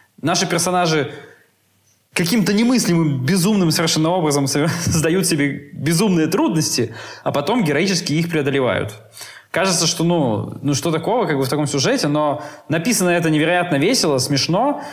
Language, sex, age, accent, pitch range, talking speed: Russian, male, 20-39, native, 140-175 Hz, 130 wpm